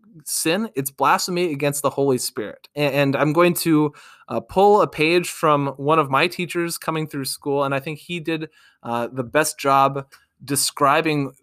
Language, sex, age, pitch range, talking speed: English, male, 20-39, 135-160 Hz, 180 wpm